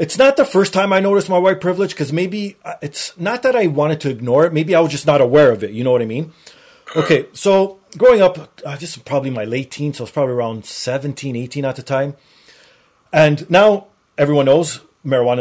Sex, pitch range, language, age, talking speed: male, 120-175 Hz, English, 30-49, 225 wpm